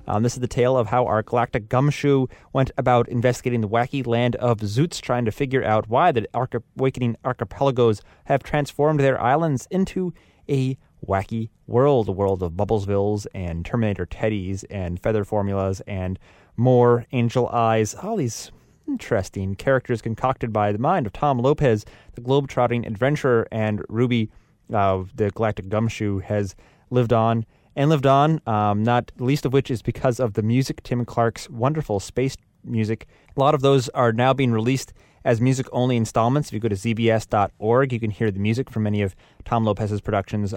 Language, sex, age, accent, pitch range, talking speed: English, male, 30-49, American, 105-130 Hz, 175 wpm